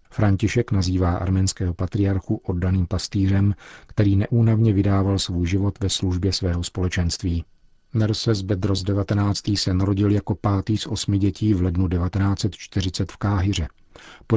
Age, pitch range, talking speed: 40-59, 90-100 Hz, 130 wpm